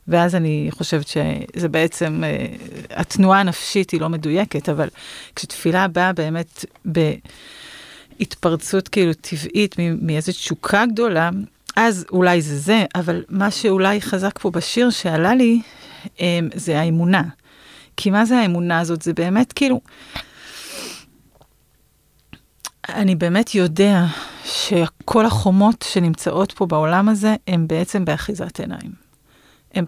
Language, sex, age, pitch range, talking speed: Hebrew, female, 30-49, 170-225 Hz, 110 wpm